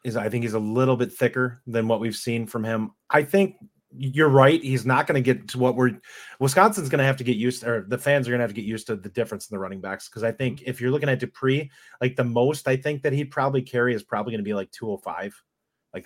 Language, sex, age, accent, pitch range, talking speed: English, male, 30-49, American, 110-135 Hz, 290 wpm